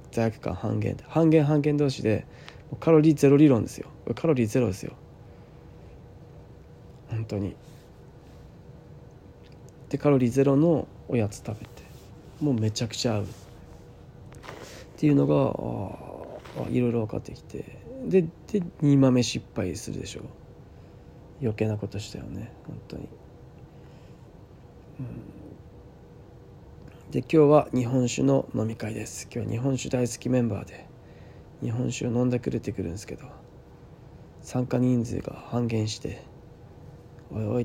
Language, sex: Japanese, male